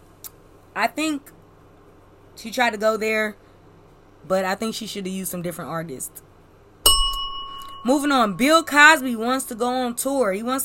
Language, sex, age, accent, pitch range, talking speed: English, female, 20-39, American, 210-270 Hz, 160 wpm